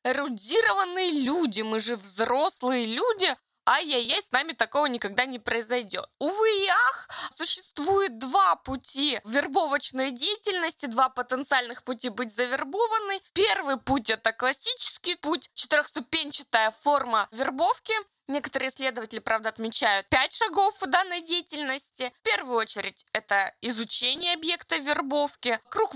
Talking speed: 120 wpm